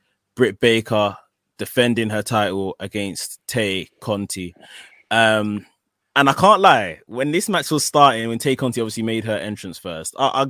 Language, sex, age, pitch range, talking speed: English, male, 20-39, 100-120 Hz, 160 wpm